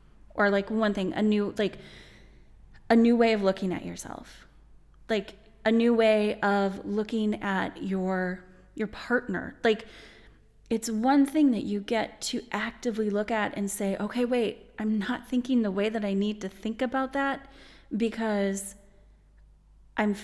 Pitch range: 190-230 Hz